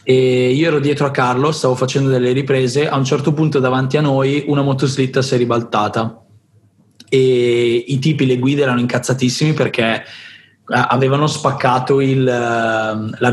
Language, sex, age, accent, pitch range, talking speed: Italian, male, 20-39, native, 120-145 Hz, 155 wpm